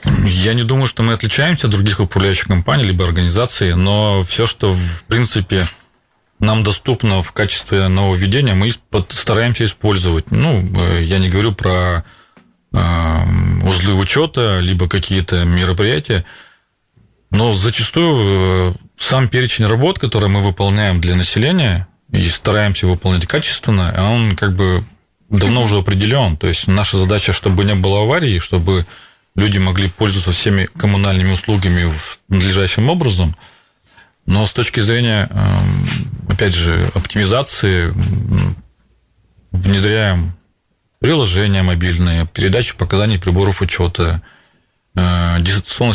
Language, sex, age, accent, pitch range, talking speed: Russian, male, 30-49, native, 90-105 Hz, 115 wpm